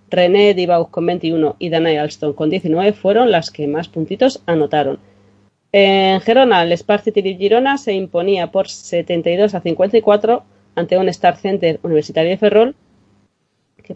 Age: 30-49